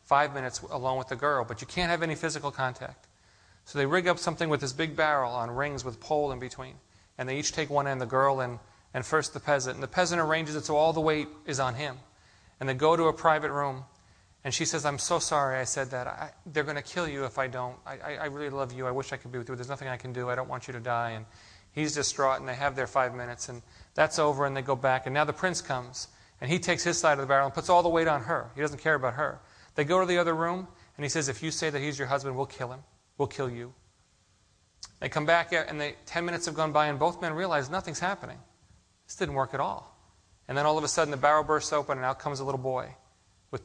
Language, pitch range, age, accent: English, 125-155 Hz, 40-59, American